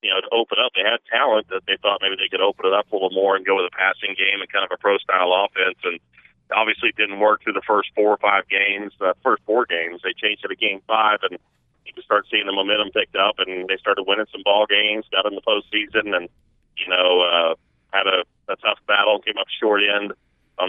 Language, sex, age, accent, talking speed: English, male, 40-59, American, 260 wpm